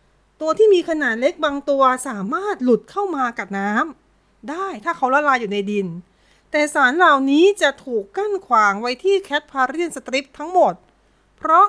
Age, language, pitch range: 30-49, Thai, 235-330 Hz